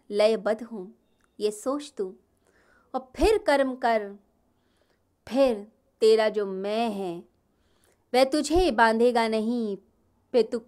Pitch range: 210-275 Hz